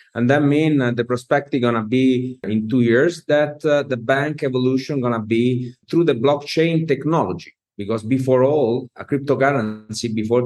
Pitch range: 115-145 Hz